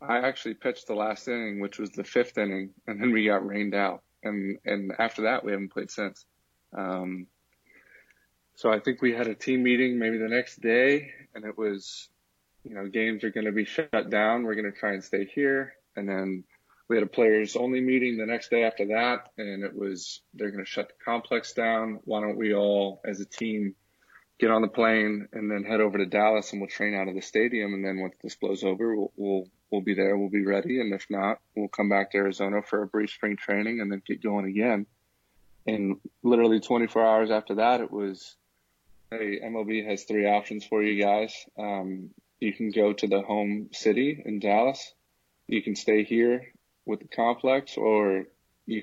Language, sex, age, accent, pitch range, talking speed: English, male, 20-39, American, 100-110 Hz, 210 wpm